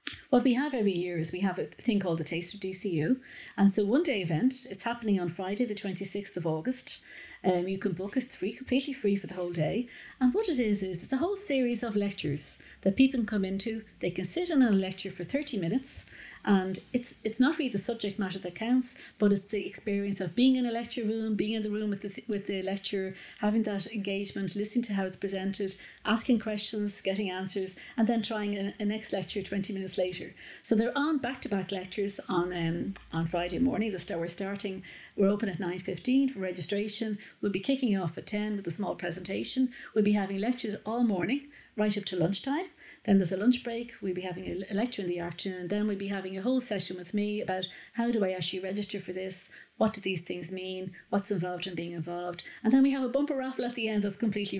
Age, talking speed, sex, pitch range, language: 60-79, 235 wpm, female, 190-240 Hz, English